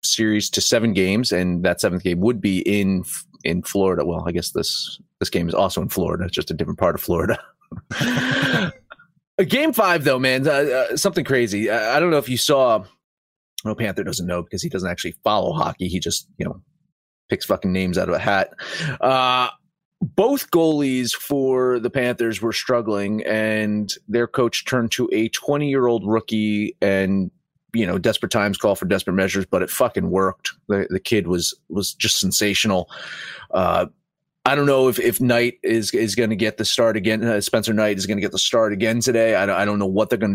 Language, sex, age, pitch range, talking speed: English, male, 30-49, 105-150 Hz, 205 wpm